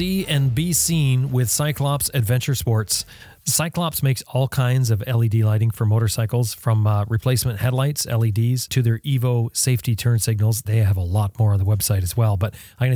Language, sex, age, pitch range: English, male, 30-49, 110-130 Hz